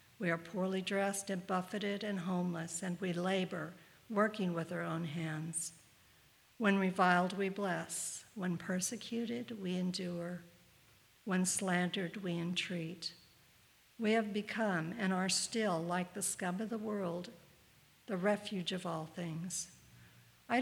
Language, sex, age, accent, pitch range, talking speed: English, female, 60-79, American, 175-205 Hz, 135 wpm